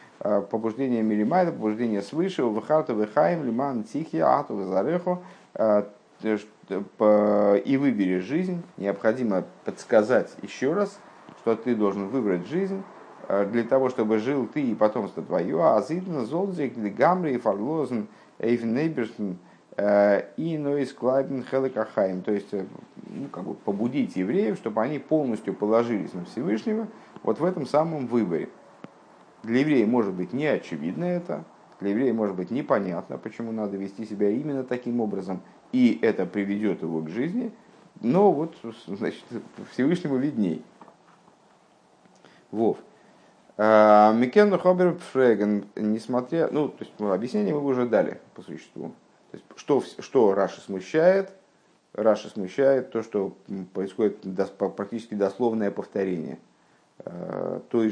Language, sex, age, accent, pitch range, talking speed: Russian, male, 50-69, native, 105-150 Hz, 115 wpm